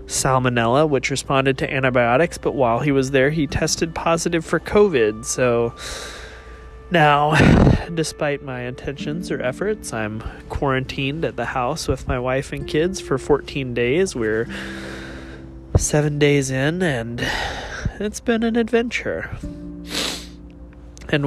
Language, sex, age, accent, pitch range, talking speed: English, male, 20-39, American, 105-150 Hz, 125 wpm